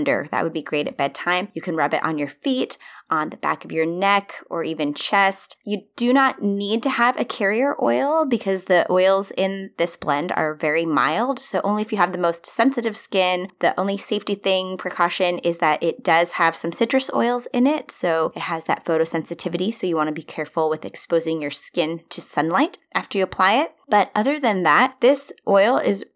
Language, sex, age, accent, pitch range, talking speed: English, female, 20-39, American, 165-220 Hz, 210 wpm